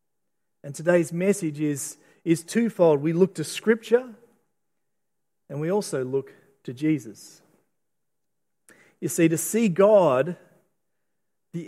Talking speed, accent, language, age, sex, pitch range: 115 wpm, Australian, English, 40-59, male, 160-200 Hz